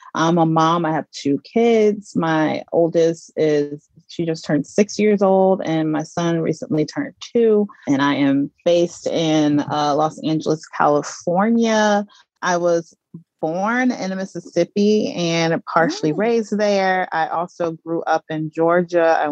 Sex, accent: female, American